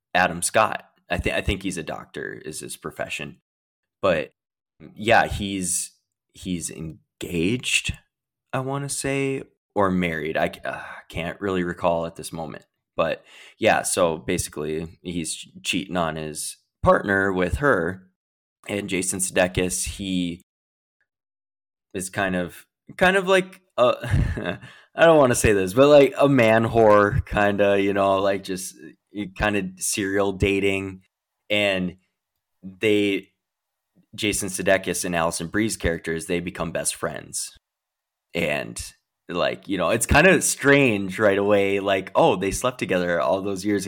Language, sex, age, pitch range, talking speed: English, male, 20-39, 90-105 Hz, 145 wpm